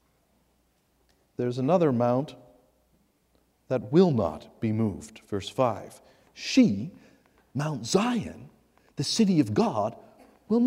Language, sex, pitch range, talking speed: English, male, 155-240 Hz, 100 wpm